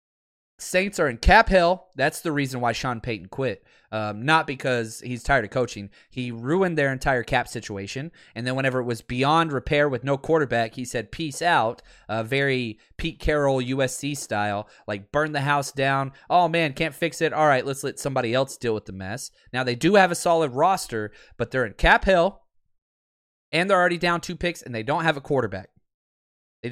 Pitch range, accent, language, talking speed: 115-155 Hz, American, English, 200 wpm